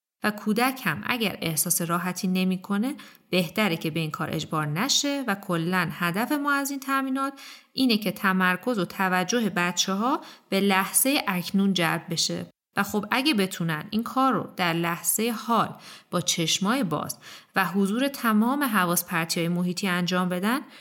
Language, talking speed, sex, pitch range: Persian, 155 wpm, female, 170-240 Hz